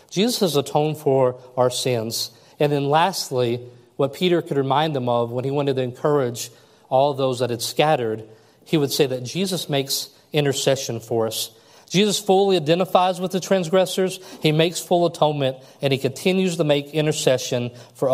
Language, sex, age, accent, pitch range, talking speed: English, male, 40-59, American, 125-160 Hz, 170 wpm